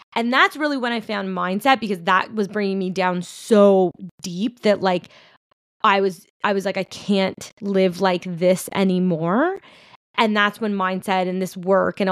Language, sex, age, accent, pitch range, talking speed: English, female, 20-39, American, 190-225 Hz, 180 wpm